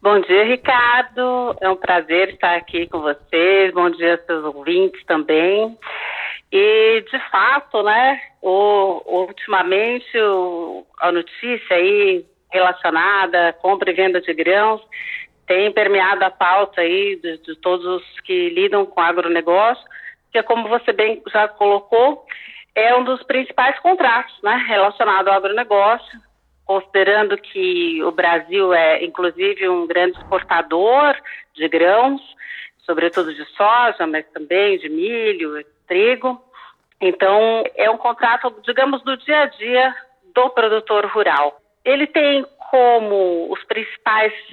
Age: 40-59